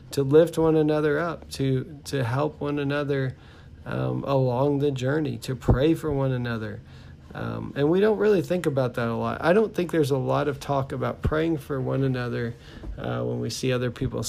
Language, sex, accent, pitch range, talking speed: English, male, American, 120-150 Hz, 200 wpm